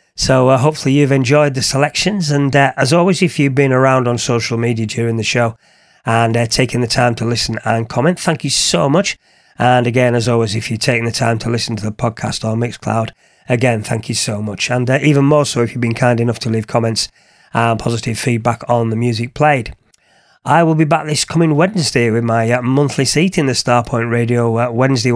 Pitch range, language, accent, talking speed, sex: 115-145 Hz, English, British, 225 wpm, male